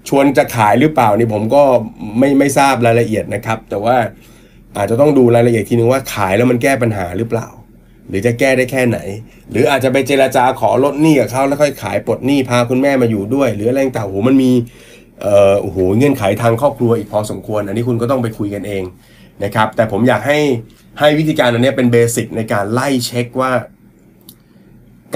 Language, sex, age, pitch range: Thai, male, 30-49, 110-135 Hz